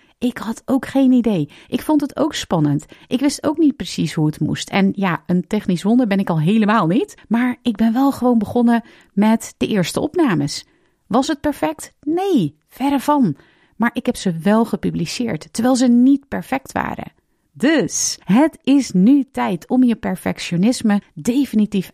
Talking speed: 175 wpm